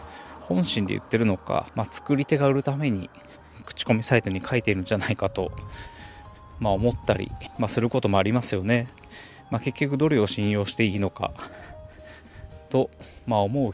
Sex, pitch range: male, 100-130 Hz